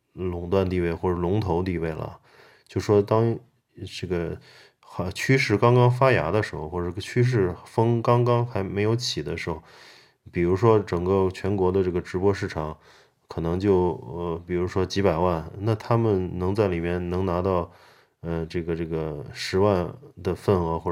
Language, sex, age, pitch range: Chinese, male, 20-39, 85-100 Hz